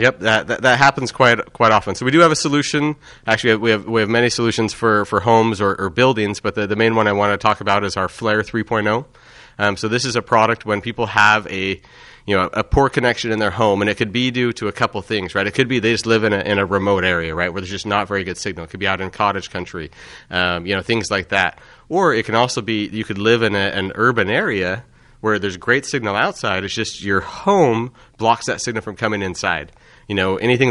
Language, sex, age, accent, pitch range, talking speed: English, male, 30-49, American, 100-115 Hz, 260 wpm